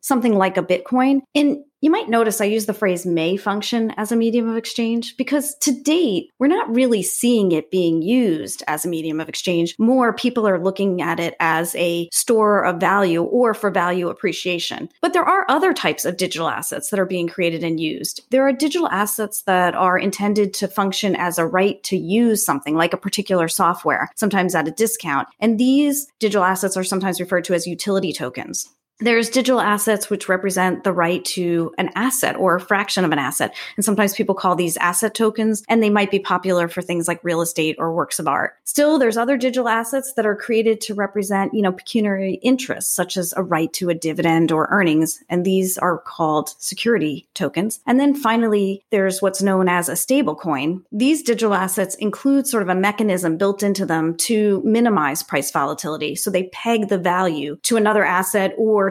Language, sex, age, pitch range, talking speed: English, female, 30-49, 175-230 Hz, 200 wpm